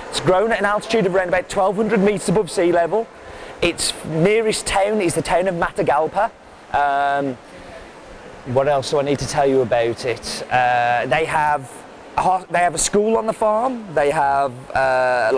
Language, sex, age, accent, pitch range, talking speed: English, male, 30-49, British, 145-200 Hz, 170 wpm